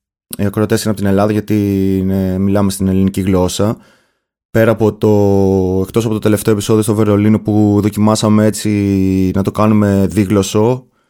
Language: Greek